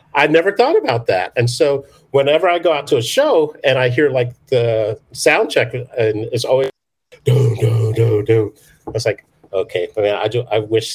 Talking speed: 190 wpm